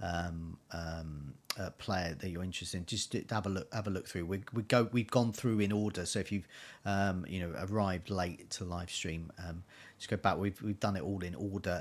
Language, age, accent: English, 40-59, British